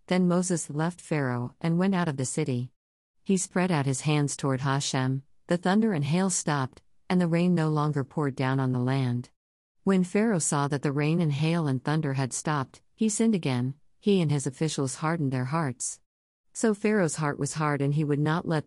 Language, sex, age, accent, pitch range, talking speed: English, female, 50-69, American, 130-165 Hz, 205 wpm